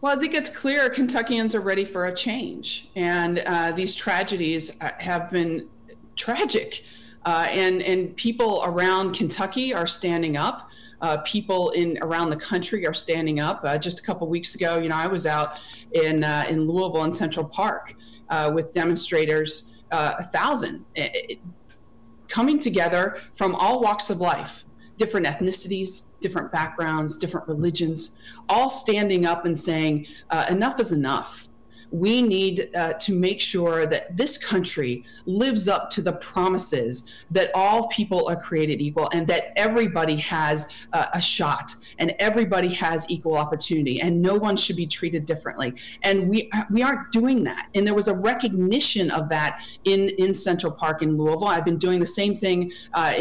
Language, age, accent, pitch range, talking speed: English, 40-59, American, 160-195 Hz, 170 wpm